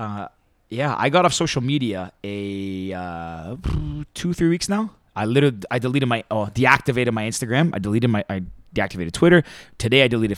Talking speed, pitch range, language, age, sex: 180 wpm, 105-140 Hz, English, 20-39, male